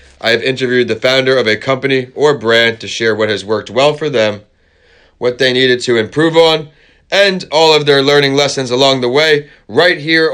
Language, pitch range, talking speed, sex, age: English, 120-145 Hz, 205 wpm, male, 30-49